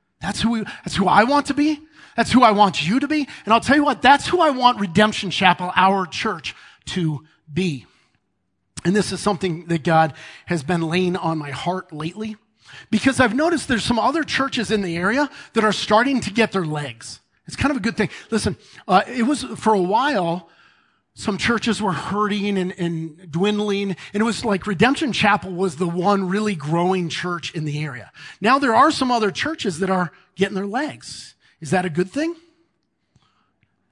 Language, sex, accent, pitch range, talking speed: English, male, American, 175-250 Hz, 200 wpm